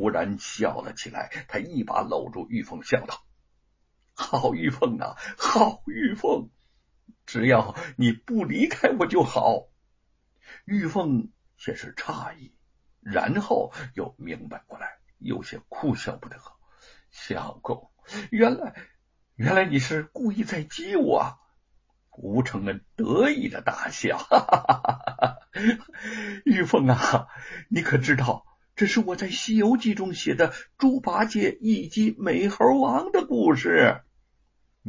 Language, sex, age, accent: Chinese, male, 60-79, native